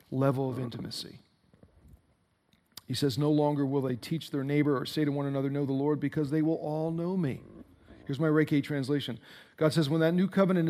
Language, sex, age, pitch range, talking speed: English, male, 40-59, 135-170 Hz, 200 wpm